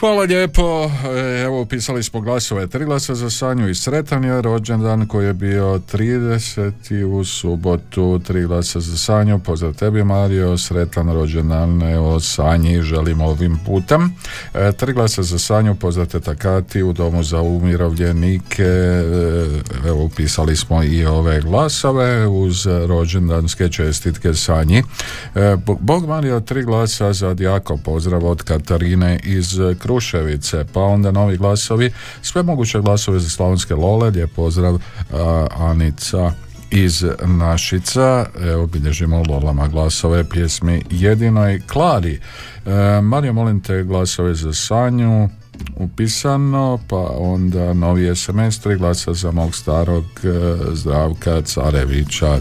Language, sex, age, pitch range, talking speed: Croatian, male, 50-69, 85-110 Hz, 125 wpm